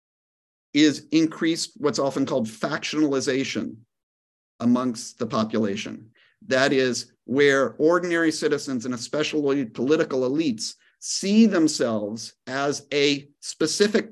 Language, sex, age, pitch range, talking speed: English, male, 50-69, 125-165 Hz, 100 wpm